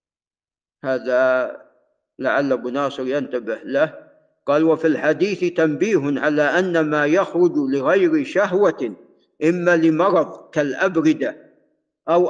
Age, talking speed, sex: 50-69, 100 wpm, male